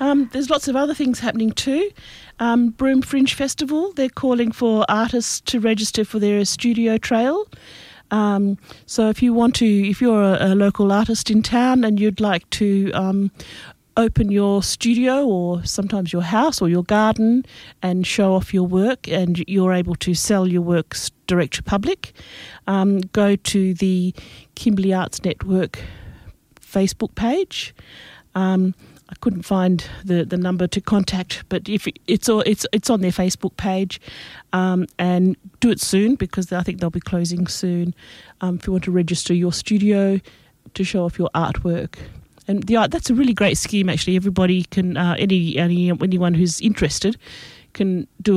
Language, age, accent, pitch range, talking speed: English, 40-59, Australian, 180-220 Hz, 175 wpm